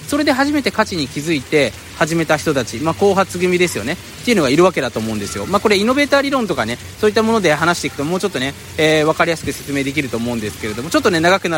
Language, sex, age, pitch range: Japanese, male, 20-39, 150-245 Hz